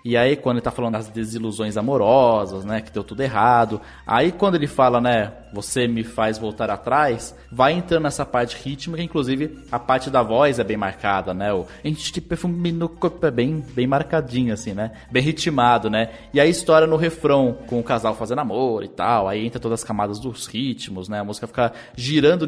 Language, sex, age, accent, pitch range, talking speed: Portuguese, male, 20-39, Brazilian, 115-155 Hz, 210 wpm